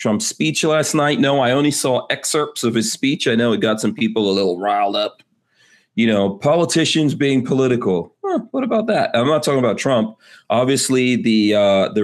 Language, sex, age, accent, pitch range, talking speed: English, male, 30-49, American, 100-135 Hz, 195 wpm